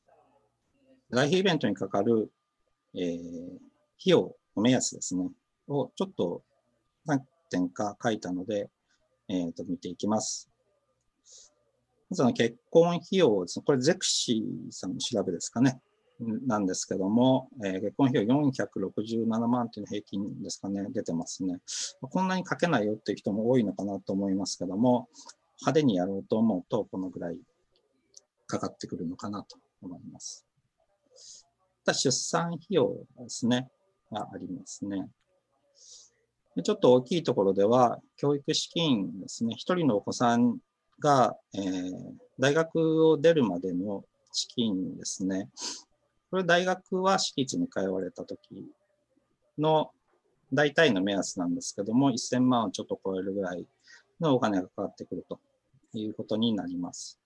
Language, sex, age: Japanese, male, 50-69